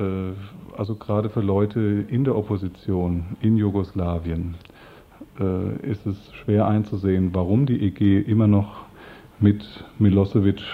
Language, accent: German, German